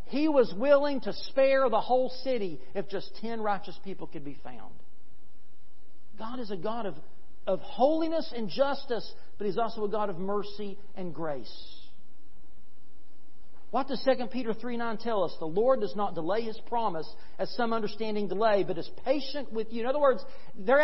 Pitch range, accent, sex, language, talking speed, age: 195-270 Hz, American, male, English, 180 wpm, 50-69